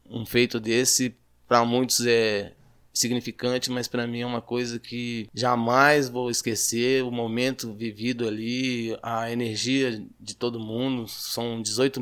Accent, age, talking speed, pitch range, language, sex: Brazilian, 20-39, 140 wpm, 115-125 Hz, Portuguese, male